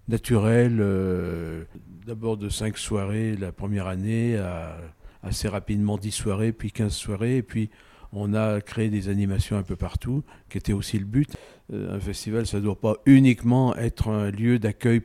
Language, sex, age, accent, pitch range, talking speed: French, male, 50-69, French, 95-110 Hz, 170 wpm